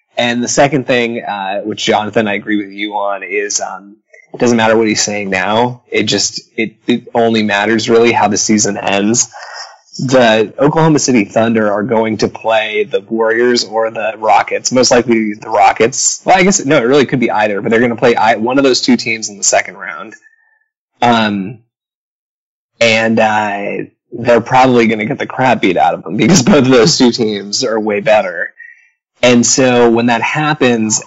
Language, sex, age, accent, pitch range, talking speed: English, male, 20-39, American, 105-125 Hz, 195 wpm